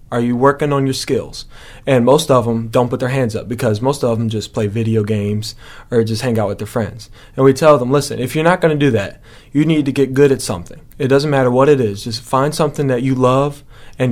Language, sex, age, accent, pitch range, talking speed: English, male, 30-49, American, 115-135 Hz, 265 wpm